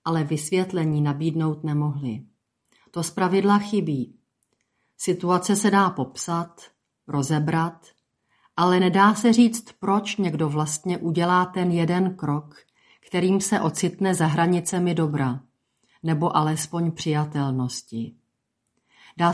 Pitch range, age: 155-190 Hz, 40-59